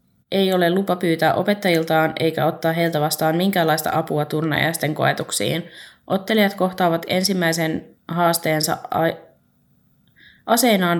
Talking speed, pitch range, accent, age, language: 100 wpm, 155-185 Hz, native, 20-39, Finnish